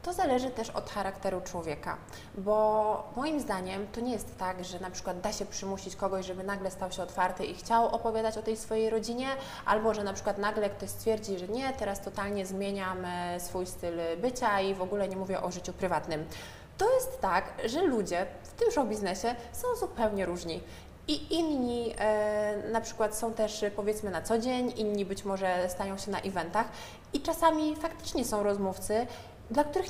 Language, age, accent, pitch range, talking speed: Polish, 20-39, native, 190-235 Hz, 180 wpm